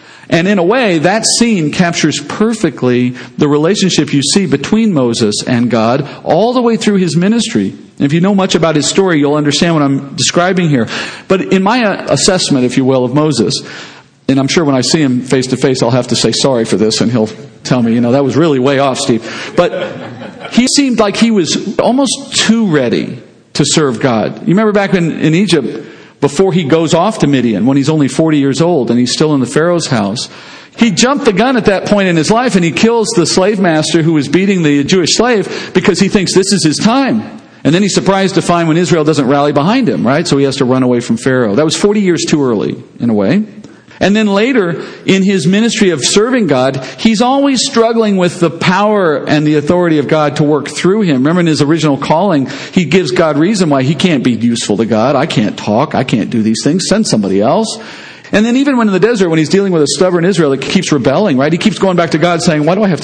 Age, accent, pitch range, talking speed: 50-69, American, 140-200 Hz, 235 wpm